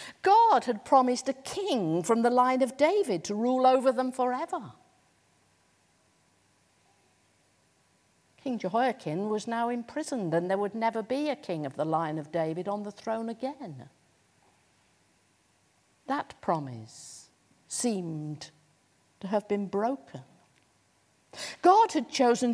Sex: female